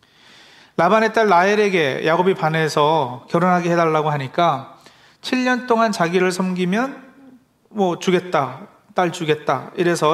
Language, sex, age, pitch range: Korean, male, 40-59, 160-220 Hz